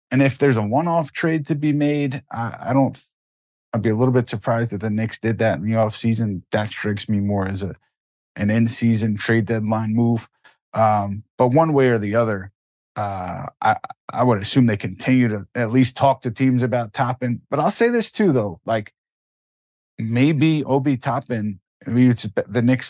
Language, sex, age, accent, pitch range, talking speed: English, male, 30-49, American, 105-125 Hz, 190 wpm